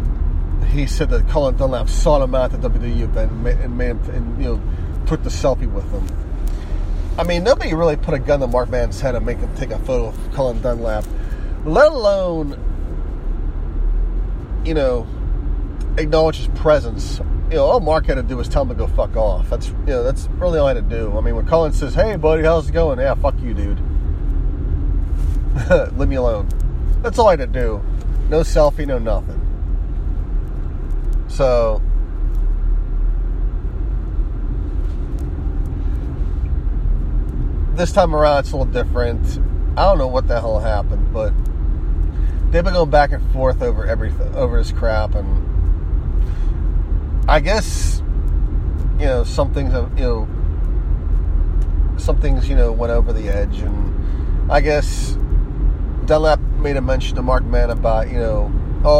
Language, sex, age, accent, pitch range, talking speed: English, male, 30-49, American, 75-105 Hz, 165 wpm